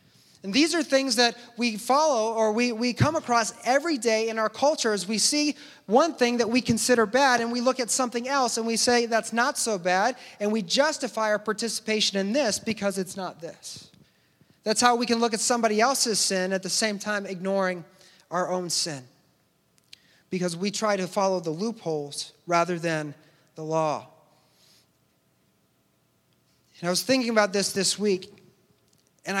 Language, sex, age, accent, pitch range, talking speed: English, male, 30-49, American, 190-250 Hz, 180 wpm